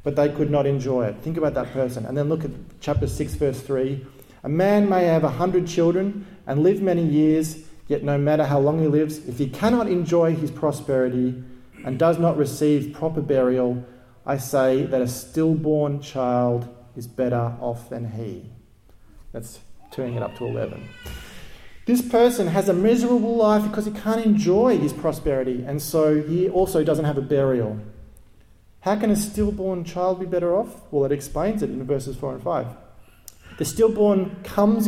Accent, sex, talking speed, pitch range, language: Australian, male, 180 wpm, 130-170 Hz, English